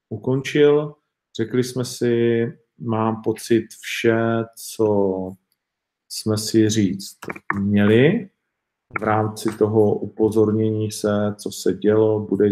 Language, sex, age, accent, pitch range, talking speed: Czech, male, 50-69, native, 105-130 Hz, 100 wpm